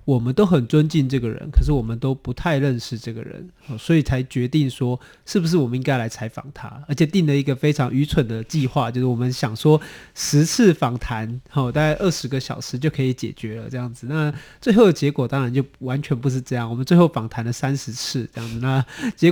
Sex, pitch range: male, 125-155 Hz